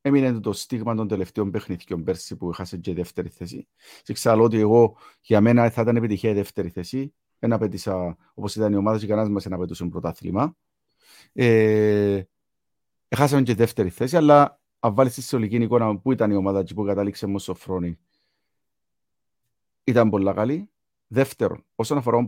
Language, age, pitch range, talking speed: Greek, 50-69, 100-135 Hz, 165 wpm